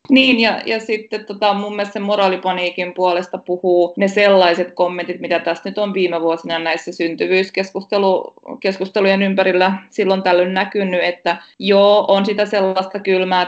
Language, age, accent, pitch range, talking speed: Finnish, 20-39, native, 165-195 Hz, 140 wpm